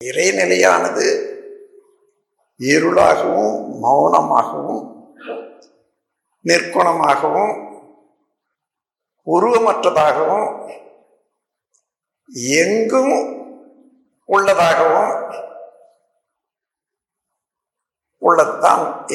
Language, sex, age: Tamil, male, 60-79